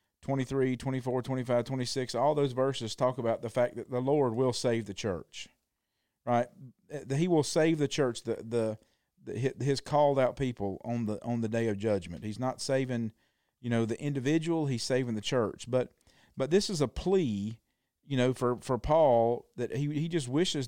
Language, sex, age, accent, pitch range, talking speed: English, male, 40-59, American, 120-155 Hz, 190 wpm